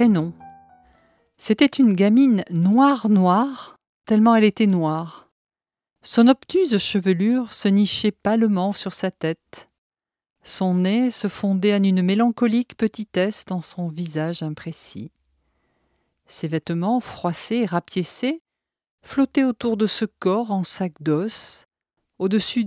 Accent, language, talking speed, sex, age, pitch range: French, French, 115 wpm, female, 50-69, 170-215 Hz